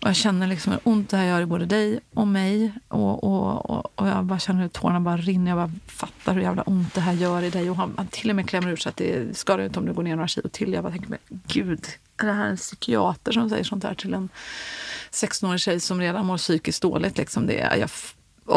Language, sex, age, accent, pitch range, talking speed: Swedish, female, 30-49, native, 175-210 Hz, 265 wpm